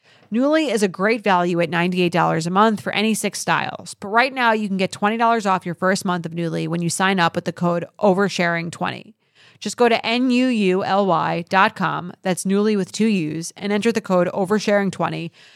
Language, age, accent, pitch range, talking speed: English, 30-49, American, 165-210 Hz, 230 wpm